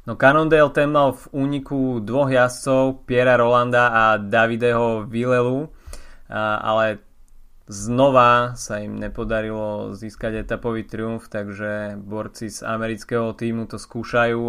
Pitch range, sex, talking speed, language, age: 110-125 Hz, male, 115 wpm, Slovak, 20-39